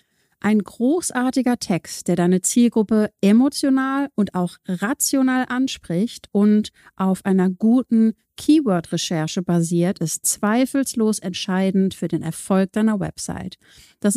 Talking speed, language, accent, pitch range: 110 wpm, German, German, 190-240 Hz